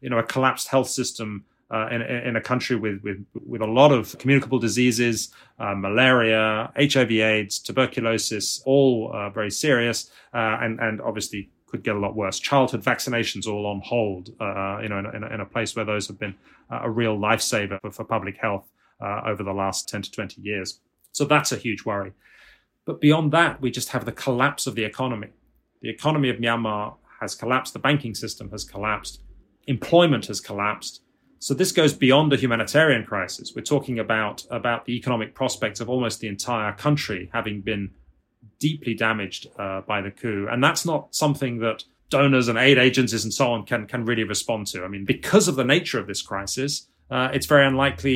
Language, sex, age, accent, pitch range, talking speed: English, male, 30-49, British, 105-130 Hz, 195 wpm